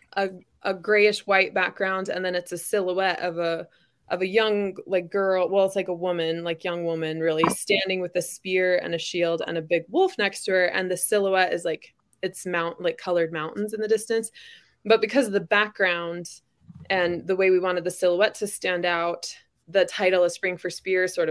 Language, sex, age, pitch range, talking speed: English, female, 20-39, 170-200 Hz, 210 wpm